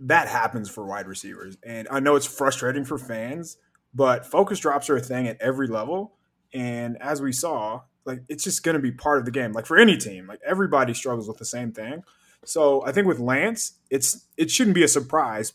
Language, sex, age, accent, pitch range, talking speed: English, male, 20-39, American, 115-145 Hz, 220 wpm